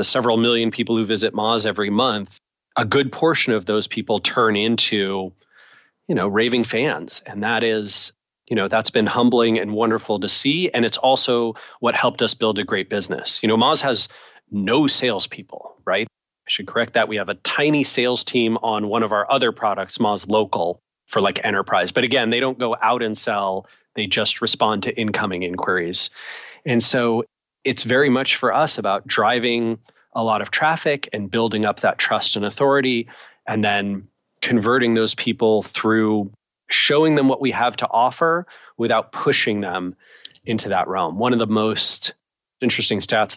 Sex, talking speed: male, 180 wpm